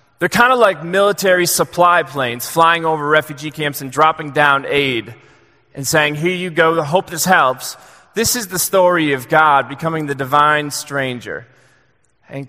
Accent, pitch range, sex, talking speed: American, 135-165 Hz, male, 170 wpm